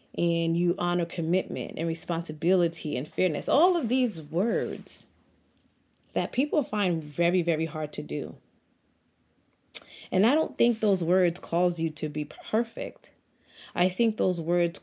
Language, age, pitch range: English, 20-39, 165-195 Hz